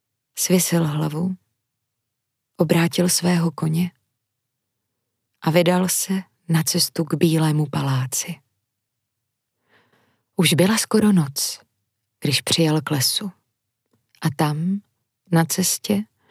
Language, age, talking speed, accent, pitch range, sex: Czech, 20-39, 90 wpm, native, 135-185 Hz, female